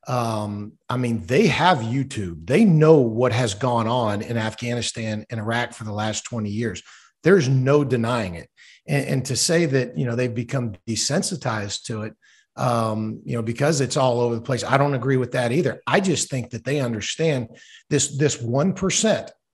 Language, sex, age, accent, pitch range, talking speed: English, male, 50-69, American, 125-175 Hz, 190 wpm